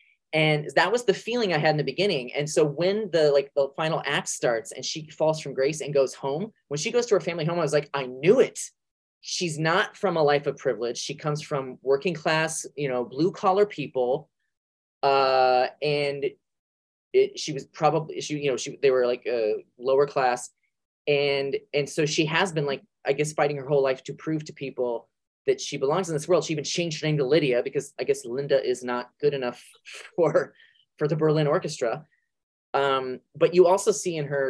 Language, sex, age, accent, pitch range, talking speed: English, male, 20-39, American, 140-195 Hz, 215 wpm